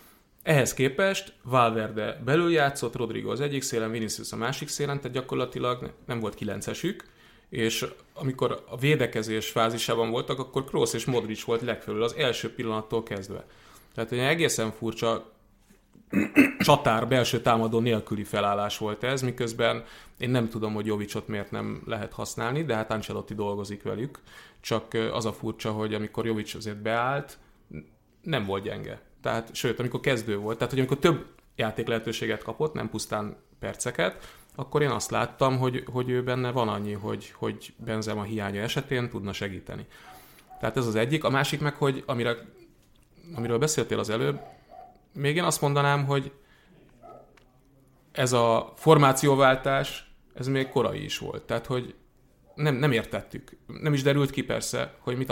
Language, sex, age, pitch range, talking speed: Hungarian, male, 30-49, 110-135 Hz, 155 wpm